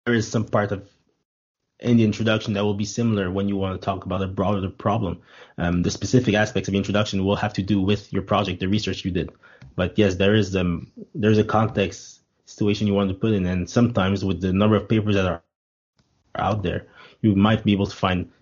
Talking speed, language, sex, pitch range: 230 wpm, English, male, 95-110 Hz